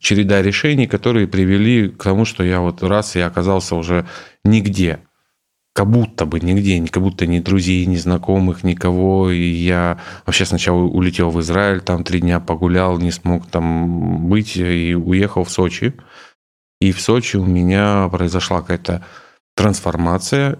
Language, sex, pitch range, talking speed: Russian, male, 90-100 Hz, 150 wpm